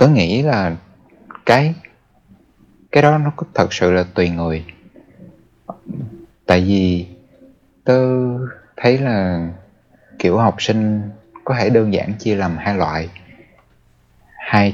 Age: 20-39